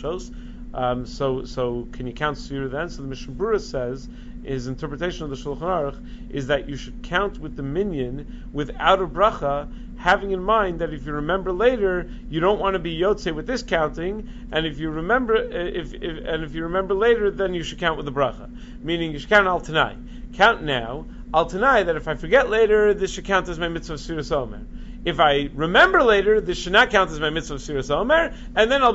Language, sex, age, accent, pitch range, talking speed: English, male, 40-59, American, 145-190 Hz, 215 wpm